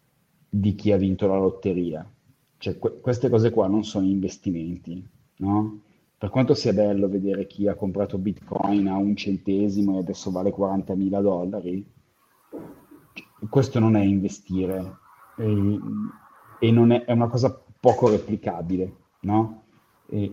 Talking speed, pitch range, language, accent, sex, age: 140 wpm, 100-120 Hz, Italian, native, male, 30-49